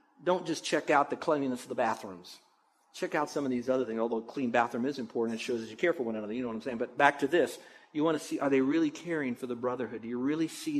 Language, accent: English, American